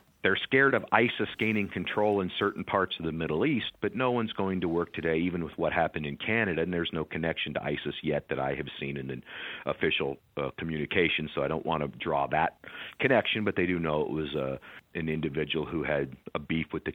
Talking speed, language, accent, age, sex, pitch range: 230 wpm, English, American, 50-69, male, 80-95 Hz